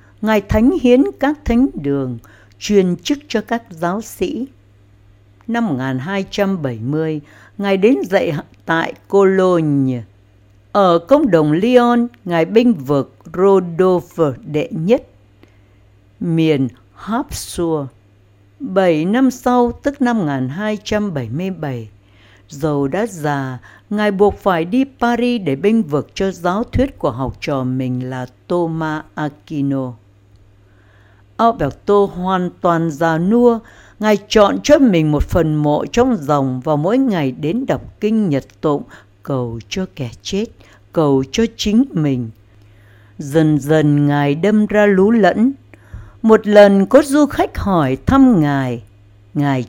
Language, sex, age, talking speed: Vietnamese, female, 60-79, 125 wpm